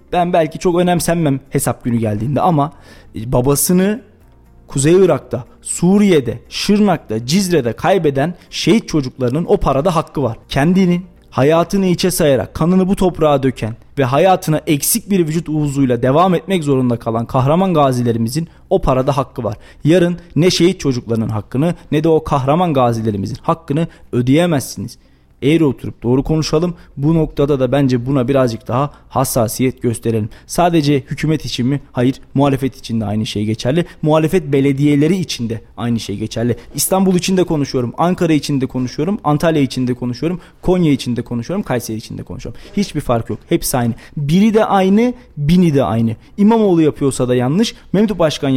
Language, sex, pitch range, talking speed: Turkish, male, 125-175 Hz, 155 wpm